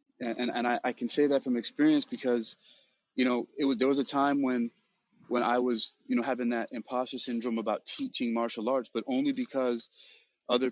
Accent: American